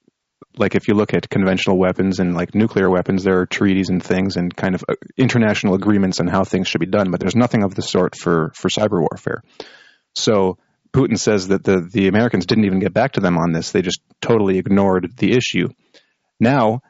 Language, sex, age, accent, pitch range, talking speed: English, male, 30-49, American, 95-115 Hz, 210 wpm